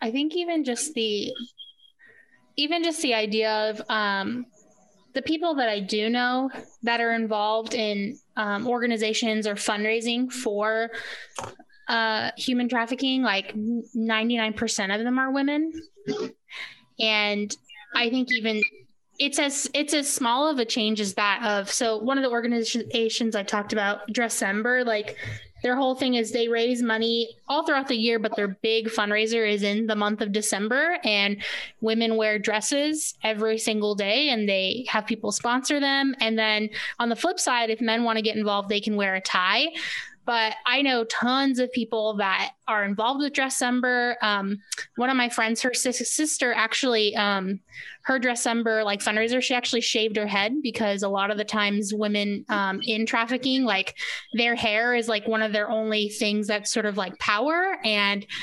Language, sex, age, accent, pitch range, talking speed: English, female, 20-39, American, 215-250 Hz, 175 wpm